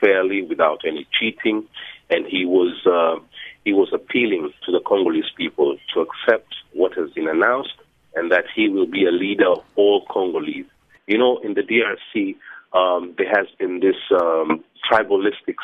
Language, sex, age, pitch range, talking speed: English, male, 30-49, 315-425 Hz, 165 wpm